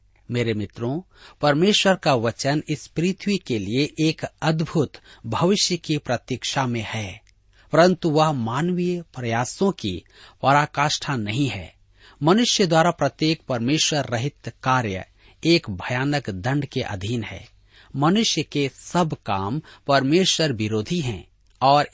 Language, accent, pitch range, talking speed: Hindi, native, 105-160 Hz, 120 wpm